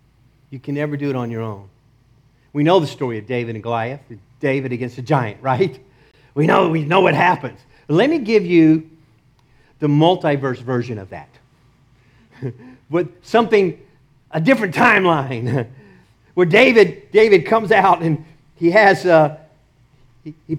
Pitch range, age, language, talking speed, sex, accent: 125-180 Hz, 50-69, English, 150 wpm, male, American